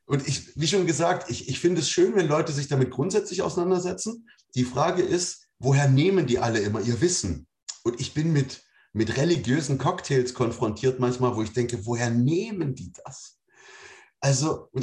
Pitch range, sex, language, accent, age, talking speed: 130-185 Hz, male, German, German, 30-49, 180 wpm